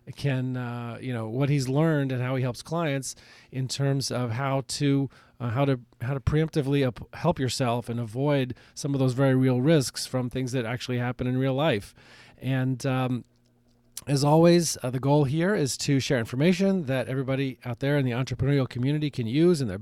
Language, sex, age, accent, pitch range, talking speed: English, male, 30-49, American, 125-150 Hz, 195 wpm